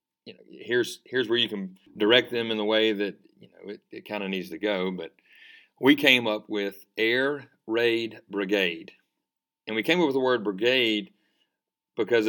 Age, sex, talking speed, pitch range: 40-59, male, 190 wpm, 100-115 Hz